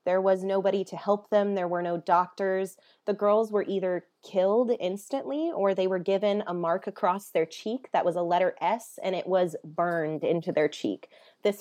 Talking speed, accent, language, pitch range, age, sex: 195 wpm, American, English, 175-210 Hz, 20-39, female